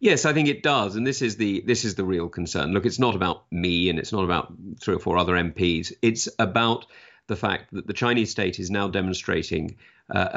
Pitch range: 95-115 Hz